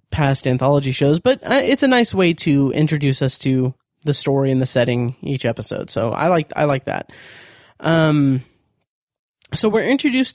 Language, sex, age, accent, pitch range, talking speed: English, male, 20-39, American, 140-165 Hz, 175 wpm